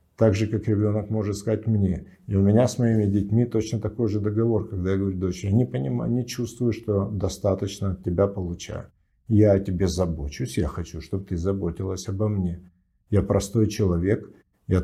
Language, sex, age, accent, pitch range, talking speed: Russian, male, 50-69, native, 95-120 Hz, 180 wpm